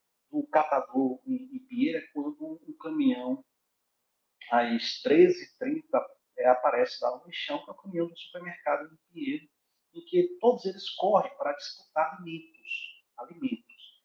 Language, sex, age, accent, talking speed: Portuguese, male, 50-69, Brazilian, 145 wpm